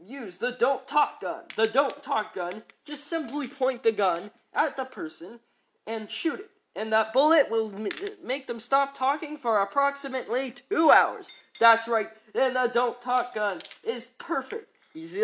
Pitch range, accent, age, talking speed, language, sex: 210-295 Hz, American, 20-39, 165 wpm, English, male